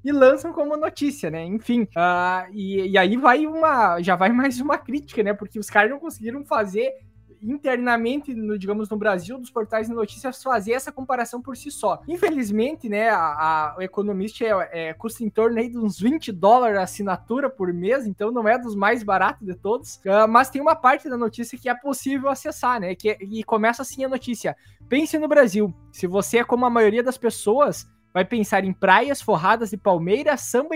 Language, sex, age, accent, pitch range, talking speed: Portuguese, male, 20-39, Brazilian, 200-255 Hz, 185 wpm